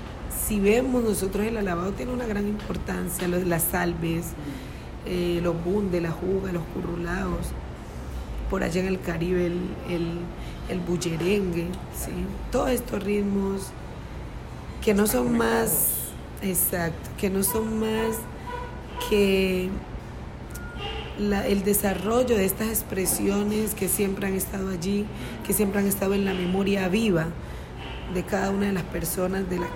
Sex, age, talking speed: female, 40-59, 135 wpm